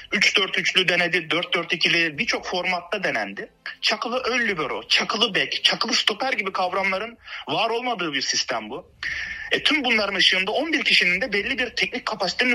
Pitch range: 175-250 Hz